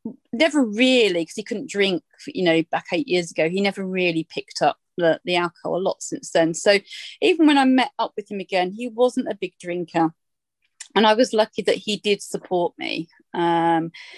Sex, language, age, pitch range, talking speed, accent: female, English, 30-49, 175-230 Hz, 205 wpm, British